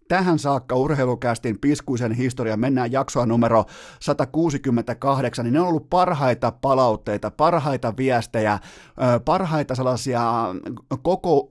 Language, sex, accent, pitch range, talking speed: Finnish, male, native, 115-145 Hz, 105 wpm